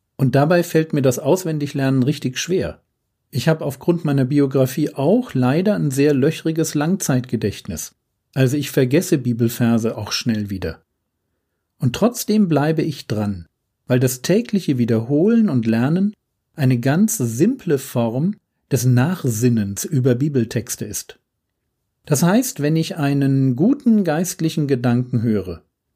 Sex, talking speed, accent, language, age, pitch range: male, 125 wpm, German, German, 40-59, 120-160 Hz